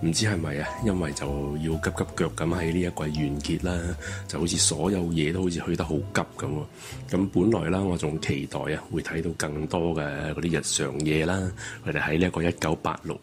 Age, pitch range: 30-49, 80-95 Hz